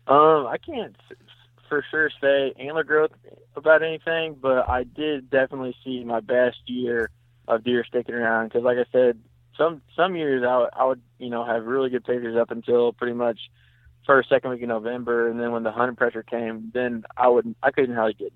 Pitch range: 115-125 Hz